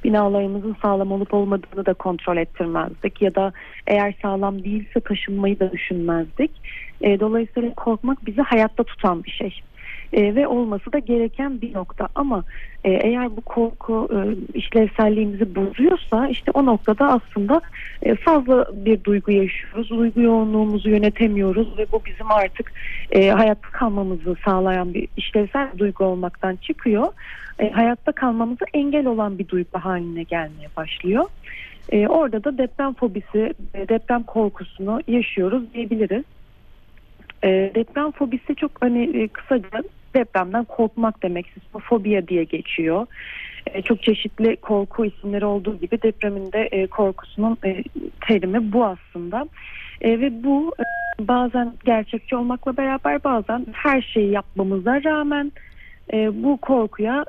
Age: 40-59